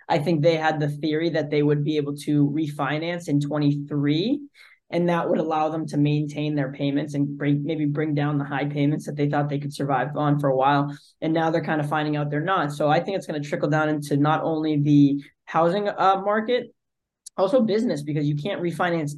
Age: 20-39